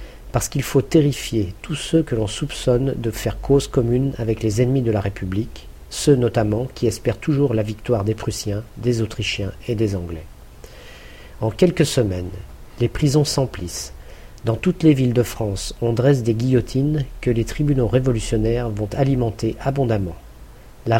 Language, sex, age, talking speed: French, male, 50-69, 165 wpm